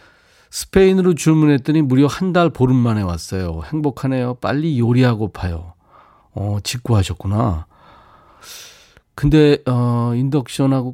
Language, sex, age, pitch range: Korean, male, 40-59, 105-145 Hz